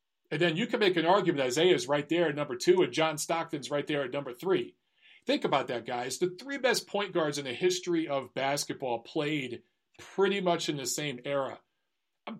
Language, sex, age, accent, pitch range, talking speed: English, male, 40-59, American, 145-190 Hz, 215 wpm